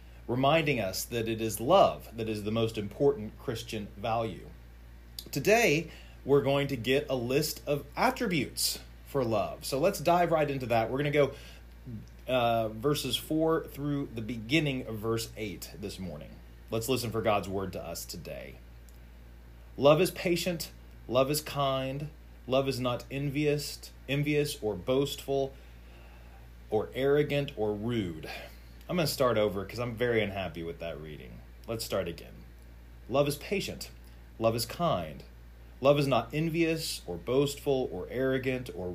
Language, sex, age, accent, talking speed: English, male, 30-49, American, 155 wpm